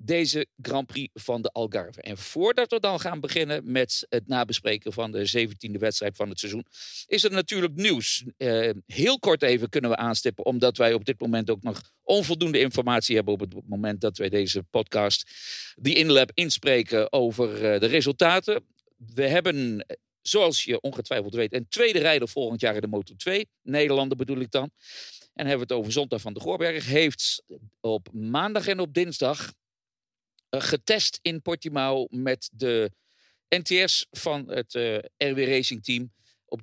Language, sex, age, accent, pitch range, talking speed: English, male, 50-69, Dutch, 115-160 Hz, 170 wpm